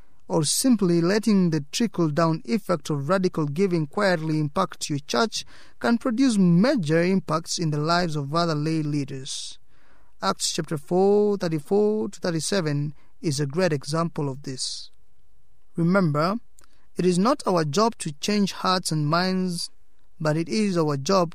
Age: 30-49